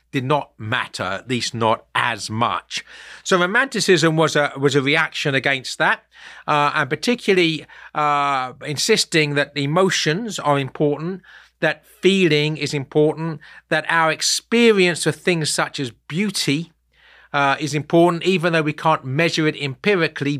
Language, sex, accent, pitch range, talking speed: English, male, British, 135-165 Hz, 140 wpm